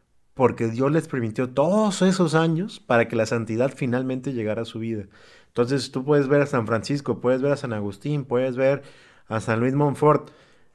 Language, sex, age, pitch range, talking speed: Spanish, male, 30-49, 115-140 Hz, 190 wpm